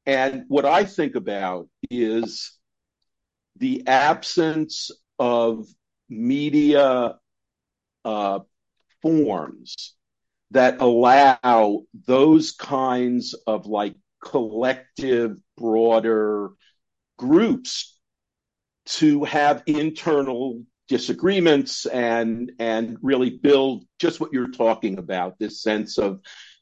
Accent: American